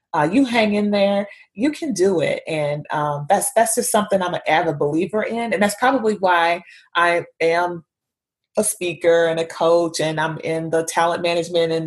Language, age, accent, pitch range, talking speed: English, 30-49, American, 170-210 Hz, 190 wpm